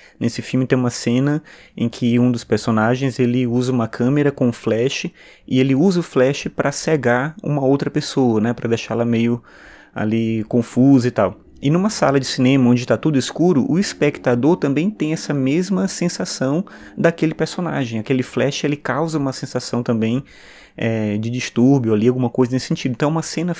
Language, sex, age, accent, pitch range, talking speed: Portuguese, male, 20-39, Brazilian, 120-145 Hz, 180 wpm